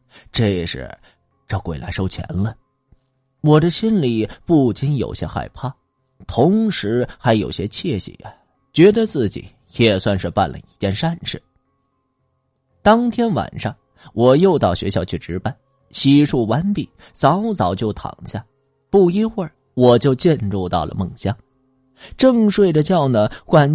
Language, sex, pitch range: Chinese, male, 105-170 Hz